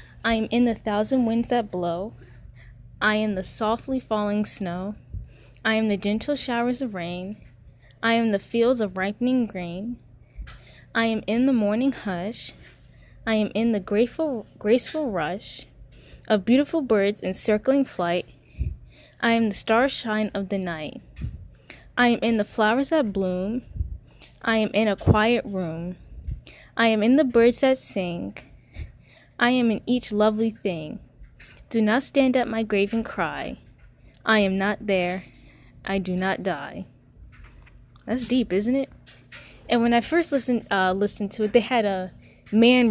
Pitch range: 185-240 Hz